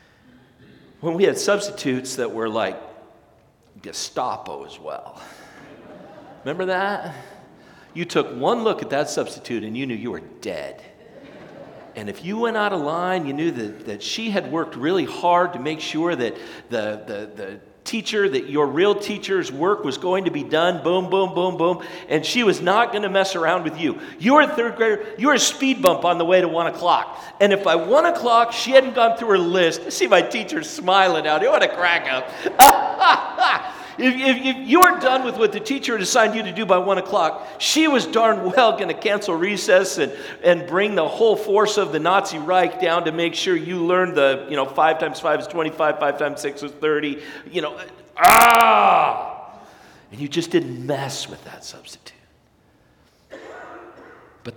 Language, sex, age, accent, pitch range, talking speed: English, male, 50-69, American, 155-225 Hz, 195 wpm